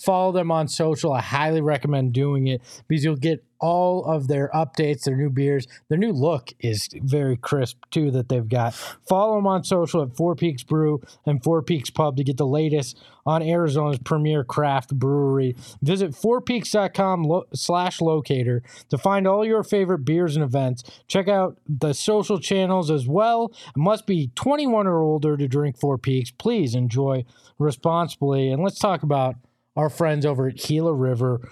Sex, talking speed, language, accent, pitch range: male, 175 wpm, English, American, 135-170 Hz